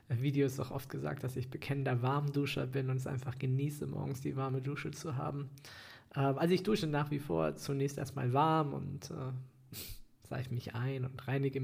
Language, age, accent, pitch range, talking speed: German, 20-39, German, 125-140 Hz, 185 wpm